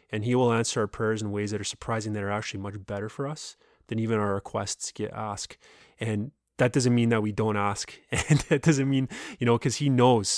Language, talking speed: English, 235 wpm